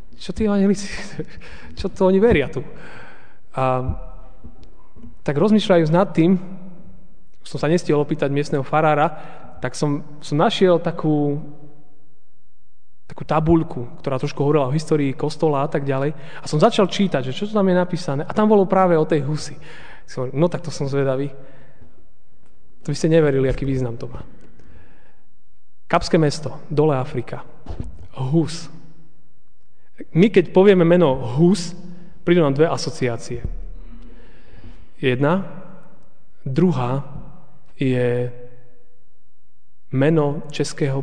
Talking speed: 125 wpm